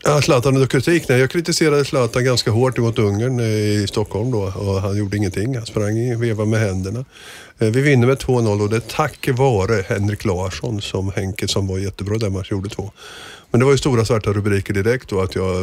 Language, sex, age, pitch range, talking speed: Swedish, male, 50-69, 100-125 Hz, 200 wpm